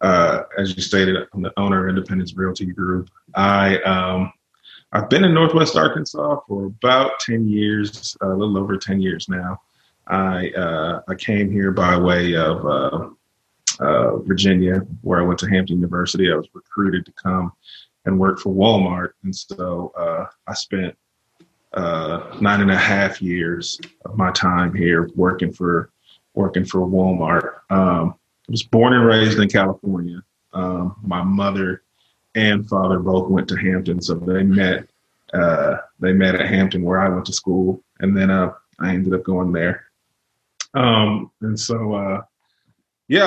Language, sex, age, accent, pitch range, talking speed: English, male, 30-49, American, 95-110 Hz, 160 wpm